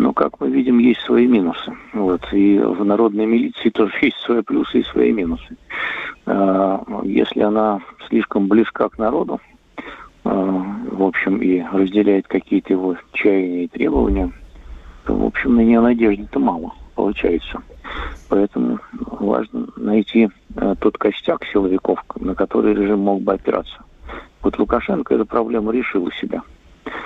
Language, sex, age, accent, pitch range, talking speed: Russian, male, 50-69, native, 95-110 Hz, 135 wpm